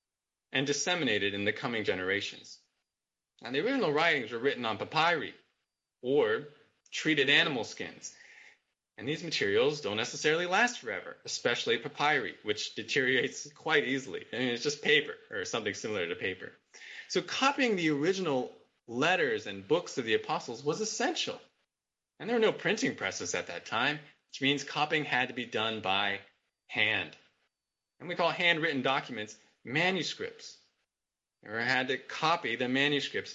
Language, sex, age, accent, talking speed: English, male, 20-39, American, 150 wpm